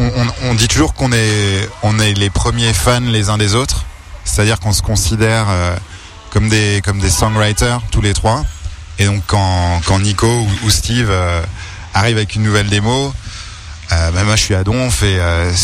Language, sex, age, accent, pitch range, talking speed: French, male, 20-39, French, 95-110 Hz, 190 wpm